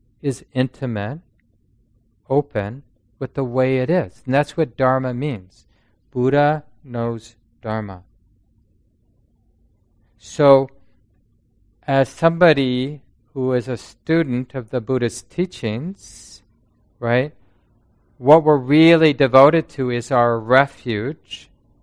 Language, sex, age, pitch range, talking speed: English, male, 40-59, 110-140 Hz, 100 wpm